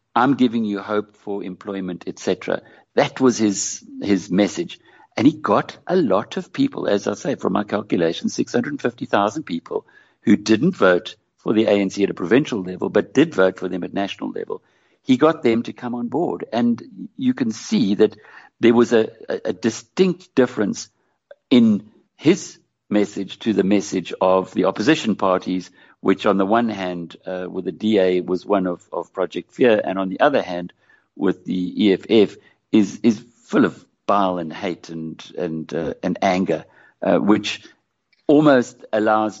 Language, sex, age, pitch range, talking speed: English, male, 60-79, 95-120 Hz, 180 wpm